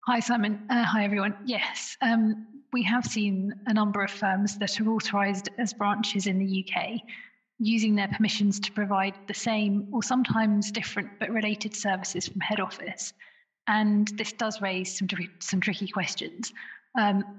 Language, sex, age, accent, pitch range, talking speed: English, female, 30-49, British, 190-215 Hz, 160 wpm